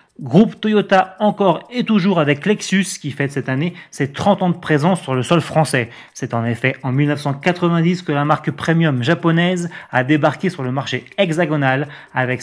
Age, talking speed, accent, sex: 30-49, 180 wpm, French, male